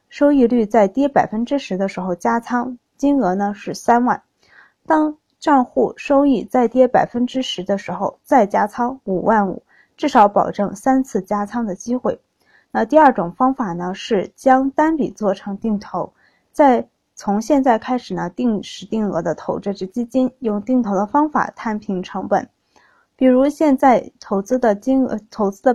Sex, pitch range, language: female, 200-270 Hz, Chinese